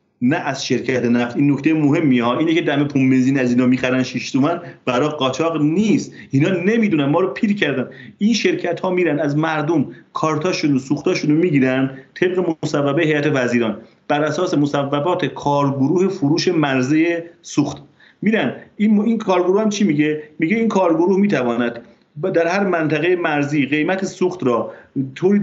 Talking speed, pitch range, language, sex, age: 155 wpm, 145-190 Hz, Persian, male, 40-59